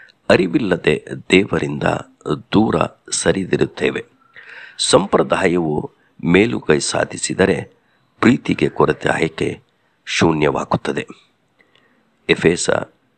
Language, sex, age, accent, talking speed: English, male, 50-69, Indian, 75 wpm